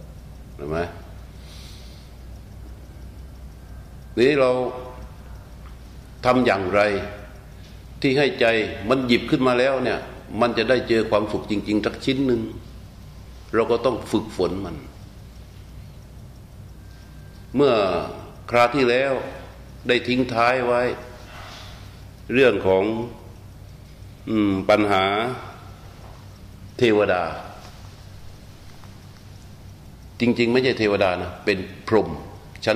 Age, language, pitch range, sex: 60-79, Thai, 100-120 Hz, male